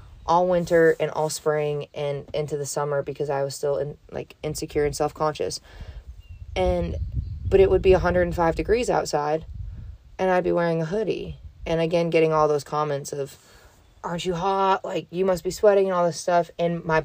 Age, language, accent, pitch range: 20-39, English, American, 145-165 Hz